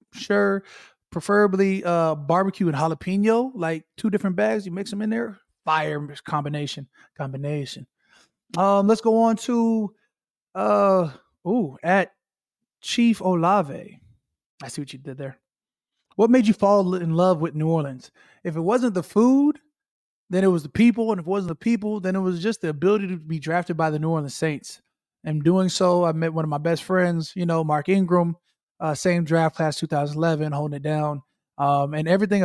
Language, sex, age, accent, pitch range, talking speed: English, male, 20-39, American, 155-210 Hz, 180 wpm